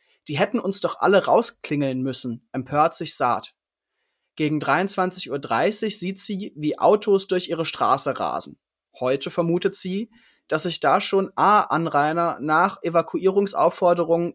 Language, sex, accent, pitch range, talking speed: German, male, German, 150-185 Hz, 130 wpm